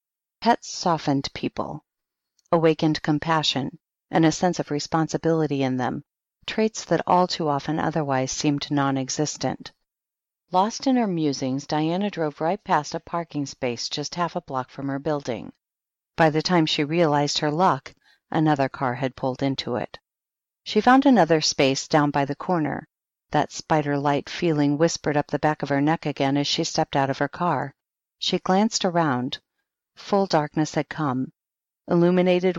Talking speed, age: 155 wpm, 50-69